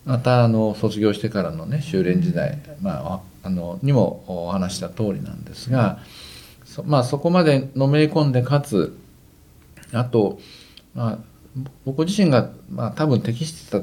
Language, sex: Japanese, male